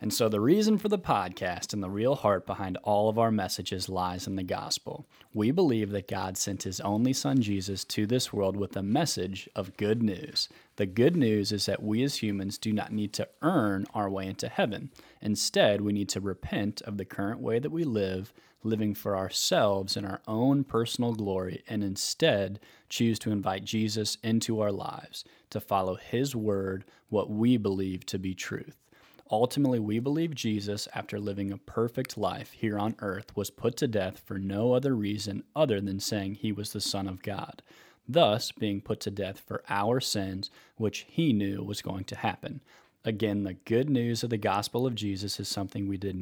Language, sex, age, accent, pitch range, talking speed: English, male, 30-49, American, 100-115 Hz, 195 wpm